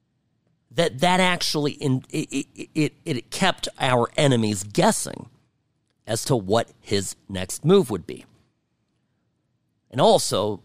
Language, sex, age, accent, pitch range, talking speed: English, male, 50-69, American, 115-160 Hz, 120 wpm